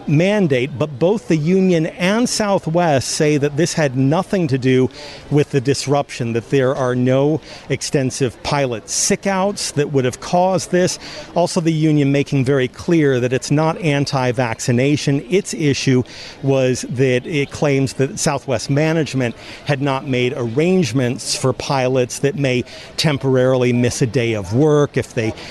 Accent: American